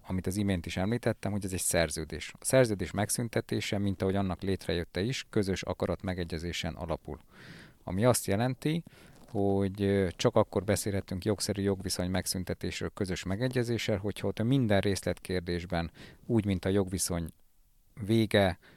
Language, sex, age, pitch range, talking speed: Hungarian, male, 50-69, 90-105 Hz, 135 wpm